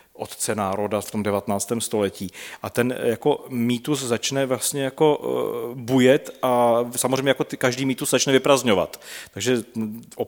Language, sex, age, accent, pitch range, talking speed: Czech, male, 40-59, native, 115-135 Hz, 135 wpm